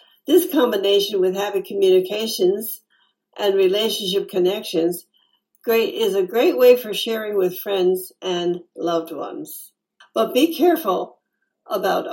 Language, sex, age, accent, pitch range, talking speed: English, female, 60-79, American, 185-255 Hz, 120 wpm